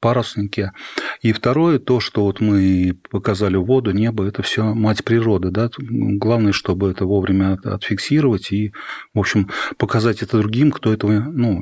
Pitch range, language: 100-120 Hz, Russian